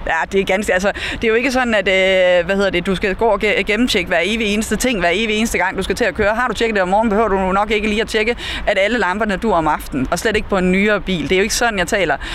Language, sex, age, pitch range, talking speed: Danish, female, 30-49, 195-240 Hz, 320 wpm